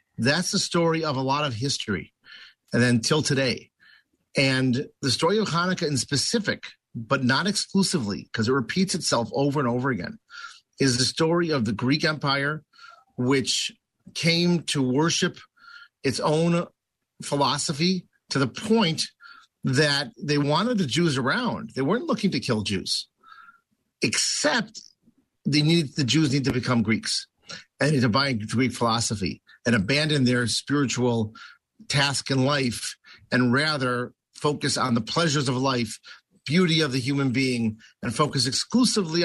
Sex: male